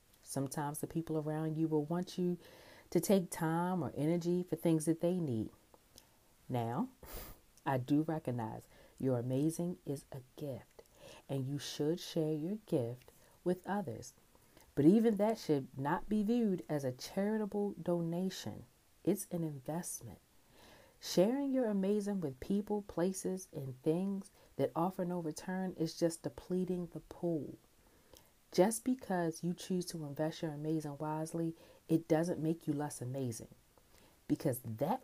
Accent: American